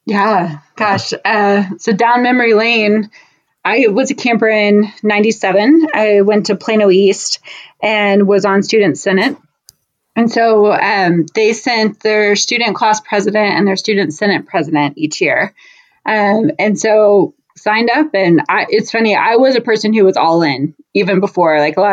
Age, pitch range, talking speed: 20-39, 190-215 Hz, 165 wpm